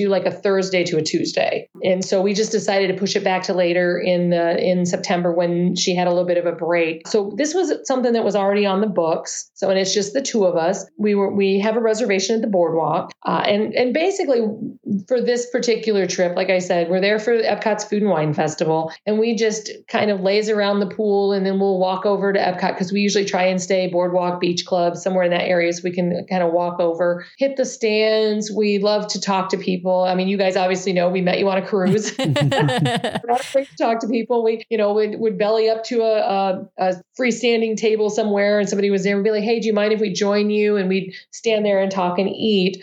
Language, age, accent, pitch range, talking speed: English, 40-59, American, 185-225 Hz, 245 wpm